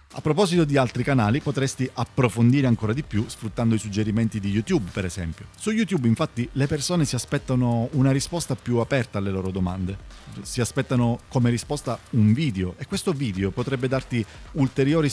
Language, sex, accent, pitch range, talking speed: Italian, male, native, 110-150 Hz, 170 wpm